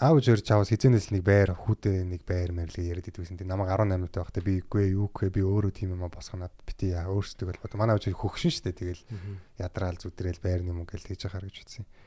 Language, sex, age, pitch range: Korean, male, 20-39, 95-120 Hz